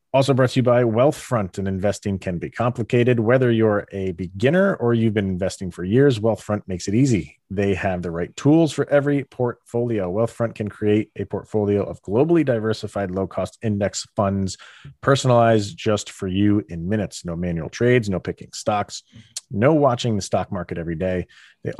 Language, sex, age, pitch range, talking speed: English, male, 30-49, 95-120 Hz, 180 wpm